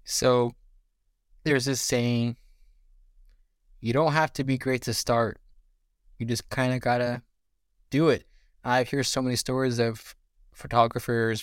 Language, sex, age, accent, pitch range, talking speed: English, male, 20-39, American, 110-135 Hz, 140 wpm